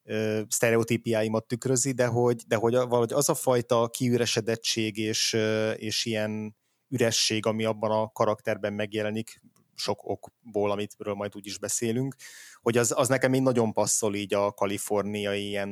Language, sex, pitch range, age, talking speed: Hungarian, male, 105-115 Hz, 20-39, 140 wpm